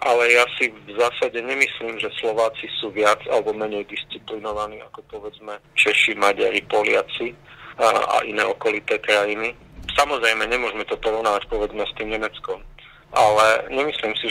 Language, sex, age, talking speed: Slovak, male, 40-59, 140 wpm